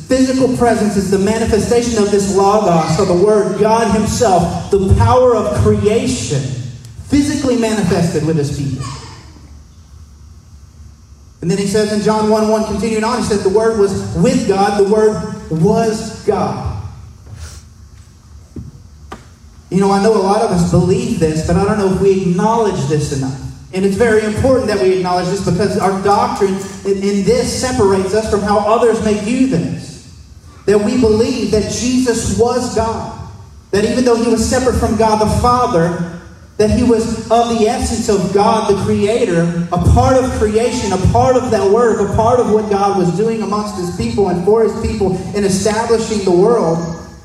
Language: English